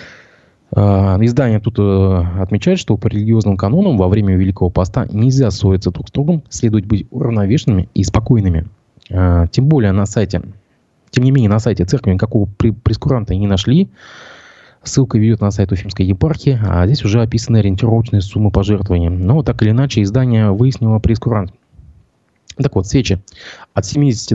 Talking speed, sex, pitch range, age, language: 150 wpm, male, 95-125 Hz, 20-39, Russian